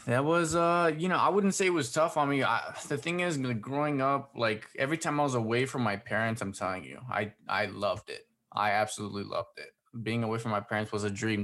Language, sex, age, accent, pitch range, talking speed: English, male, 20-39, American, 105-135 Hz, 240 wpm